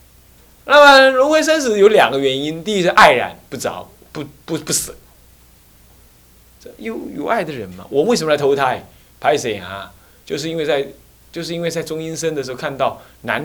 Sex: male